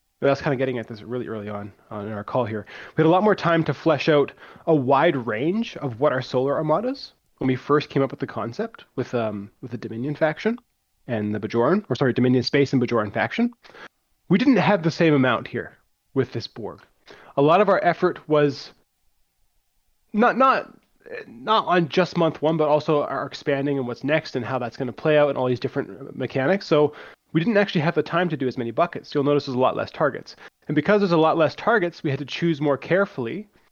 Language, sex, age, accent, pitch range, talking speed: English, male, 20-39, American, 130-170 Hz, 230 wpm